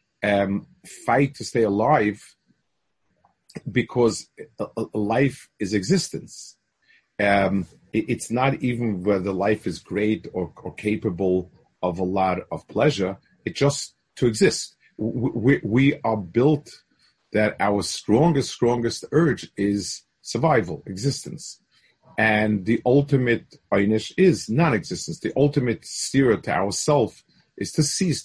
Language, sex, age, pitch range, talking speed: English, male, 40-59, 105-140 Hz, 125 wpm